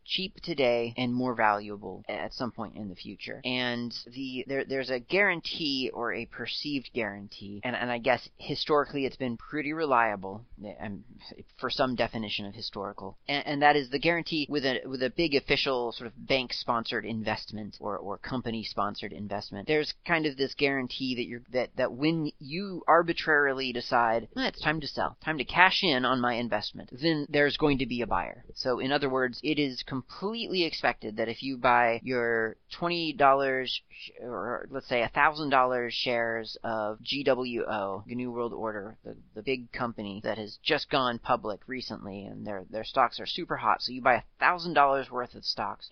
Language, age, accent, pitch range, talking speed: English, 30-49, American, 115-145 Hz, 180 wpm